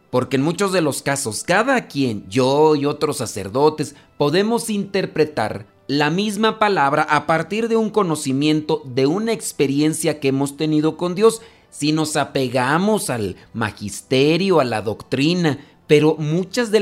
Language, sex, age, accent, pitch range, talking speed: Spanish, male, 40-59, Mexican, 125-160 Hz, 145 wpm